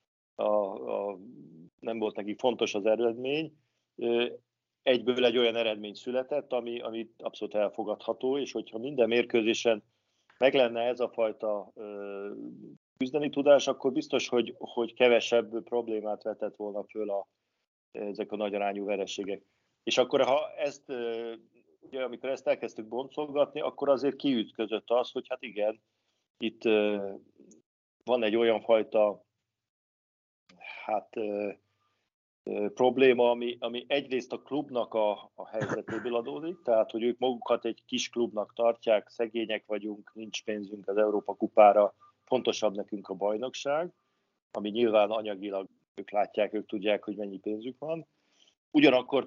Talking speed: 135 wpm